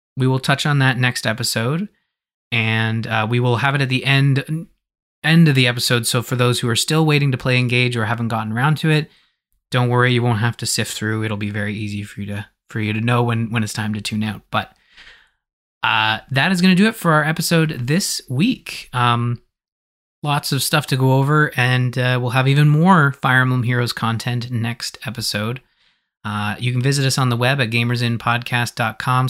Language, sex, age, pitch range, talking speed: English, male, 20-39, 120-155 Hz, 215 wpm